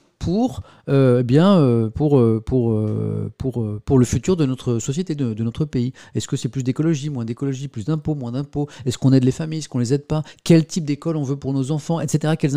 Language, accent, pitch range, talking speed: French, French, 120-170 Hz, 200 wpm